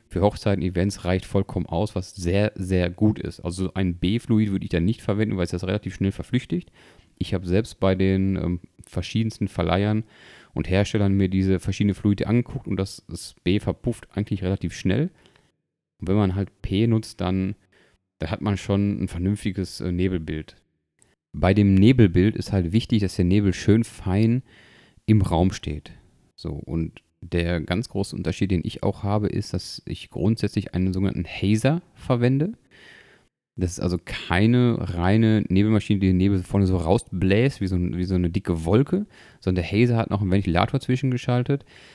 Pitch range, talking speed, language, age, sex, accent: 90-105 Hz, 170 wpm, German, 30-49, male, German